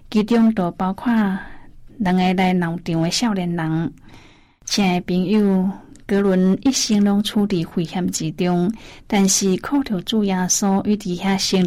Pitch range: 175-205 Hz